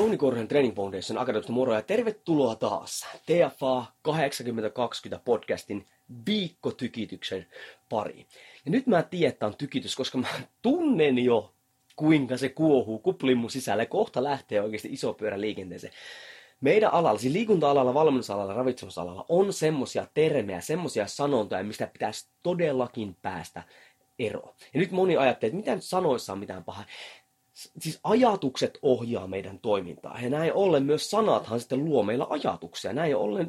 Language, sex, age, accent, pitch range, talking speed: Finnish, male, 30-49, native, 115-175 Hz, 140 wpm